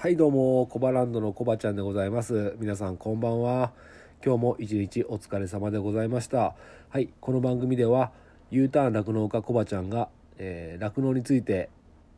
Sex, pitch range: male, 100-135 Hz